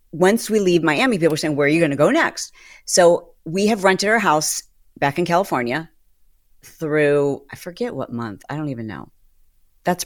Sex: female